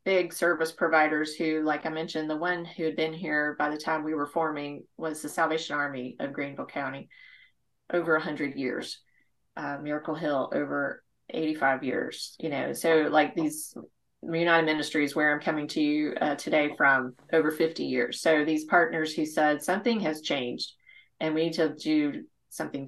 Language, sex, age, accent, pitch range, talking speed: English, female, 30-49, American, 150-175 Hz, 175 wpm